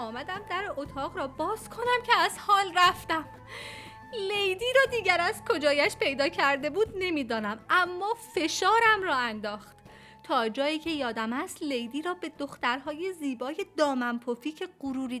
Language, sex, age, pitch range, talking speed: Persian, female, 30-49, 220-335 Hz, 145 wpm